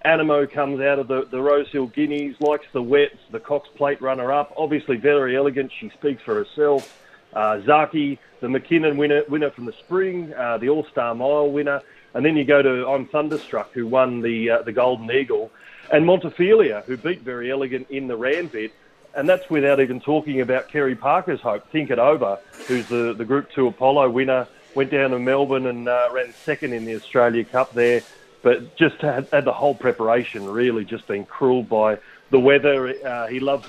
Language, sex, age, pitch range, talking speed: English, male, 30-49, 120-145 Hz, 200 wpm